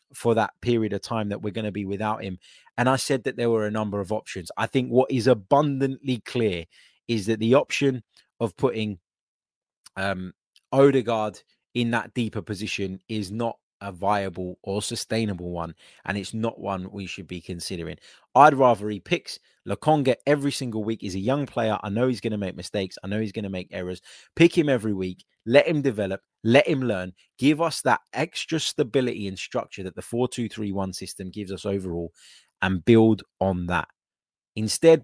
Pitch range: 100-125 Hz